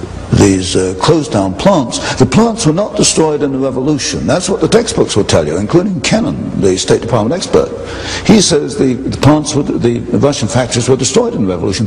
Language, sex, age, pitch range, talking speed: English, male, 60-79, 95-130 Hz, 205 wpm